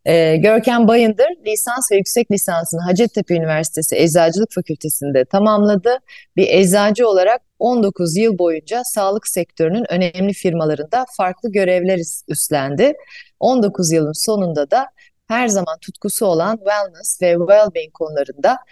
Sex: female